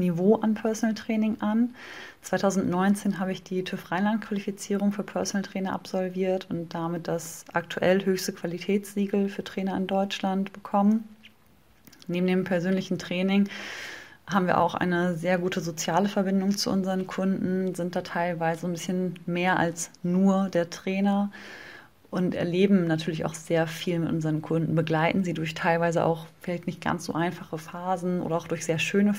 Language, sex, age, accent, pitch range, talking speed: German, female, 20-39, German, 170-195 Hz, 155 wpm